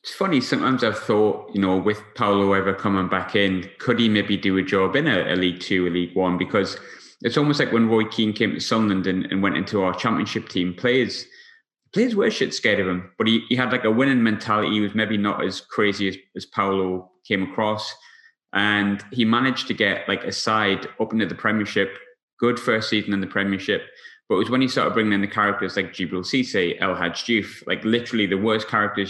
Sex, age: male, 20-39